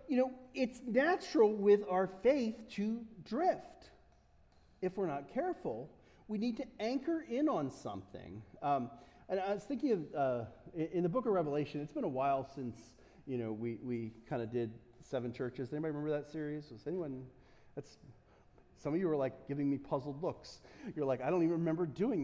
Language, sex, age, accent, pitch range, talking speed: English, male, 40-59, American, 145-225 Hz, 185 wpm